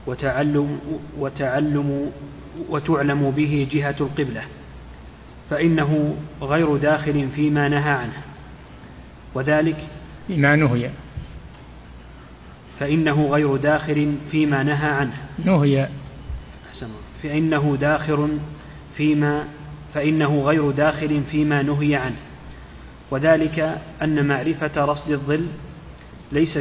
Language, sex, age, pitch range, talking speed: Arabic, male, 30-49, 140-150 Hz, 80 wpm